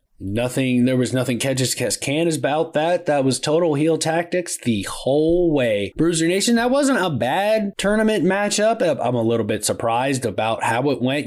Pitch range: 125-155 Hz